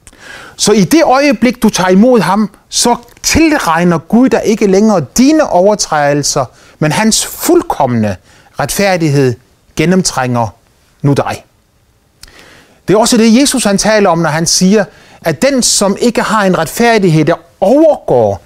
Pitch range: 120-200 Hz